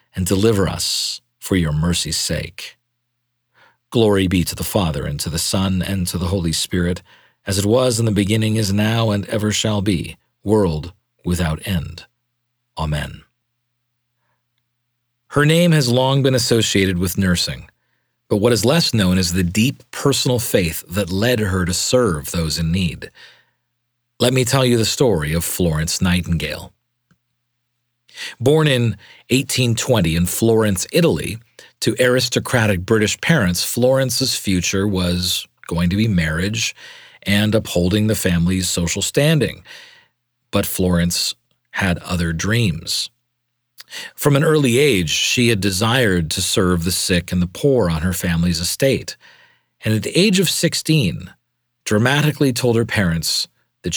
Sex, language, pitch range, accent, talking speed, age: male, English, 90-120 Hz, American, 145 wpm, 40-59